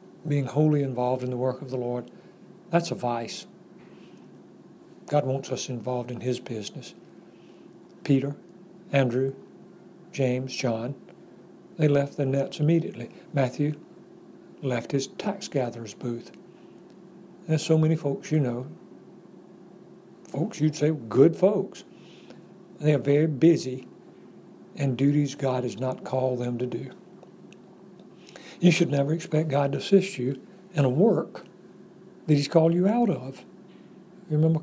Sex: male